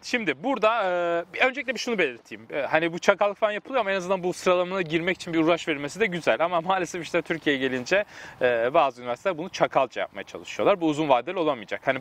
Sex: male